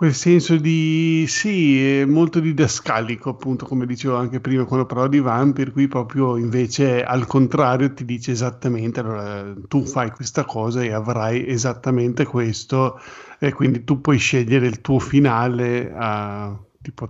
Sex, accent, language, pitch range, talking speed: male, native, Italian, 120-140 Hz, 160 wpm